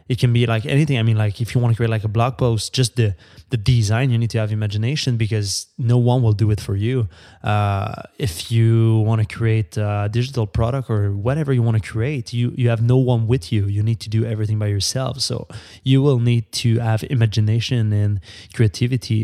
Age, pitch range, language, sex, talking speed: 20-39, 105-120 Hz, English, male, 225 wpm